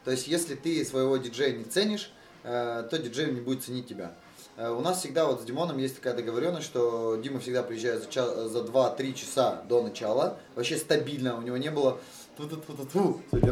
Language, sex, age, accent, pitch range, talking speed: Russian, male, 20-39, native, 125-155 Hz, 190 wpm